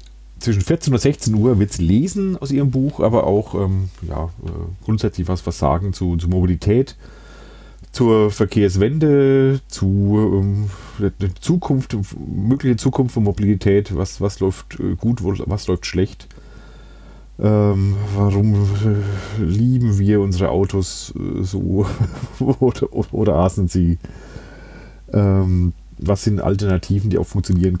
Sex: male